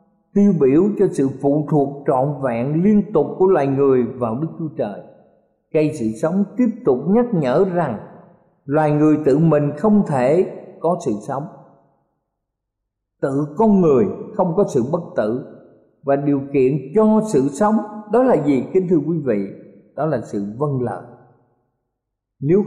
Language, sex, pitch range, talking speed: Vietnamese, male, 125-195 Hz, 160 wpm